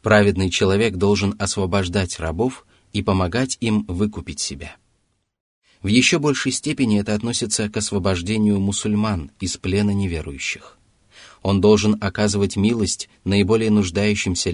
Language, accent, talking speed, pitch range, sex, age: Russian, native, 115 wpm, 90-110 Hz, male, 30-49